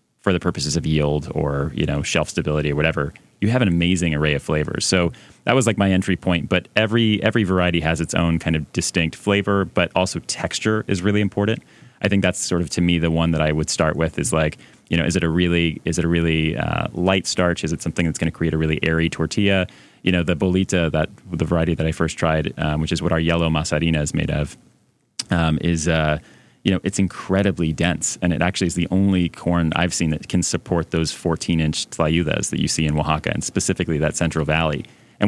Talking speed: 235 wpm